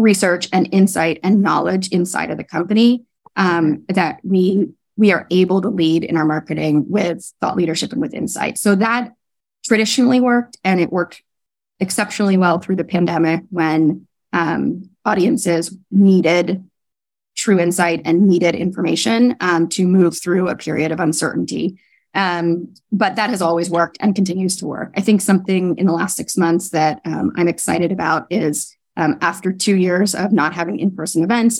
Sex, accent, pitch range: female, American, 165-195 Hz